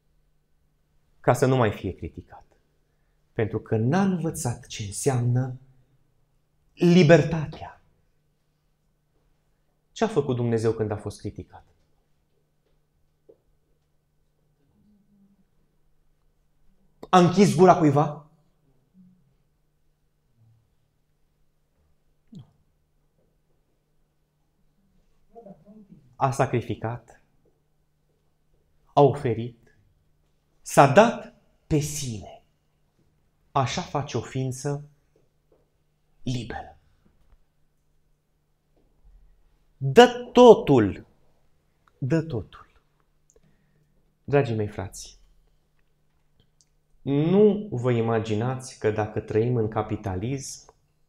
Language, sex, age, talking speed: Romanian, male, 30-49, 60 wpm